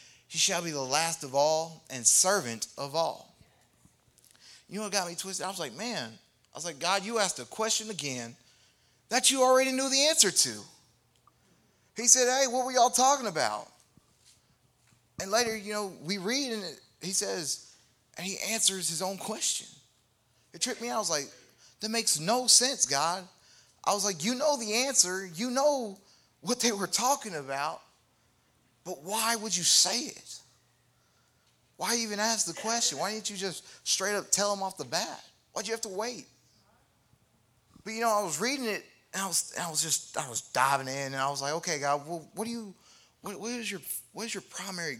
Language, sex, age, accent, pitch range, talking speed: English, male, 30-49, American, 140-220 Hz, 200 wpm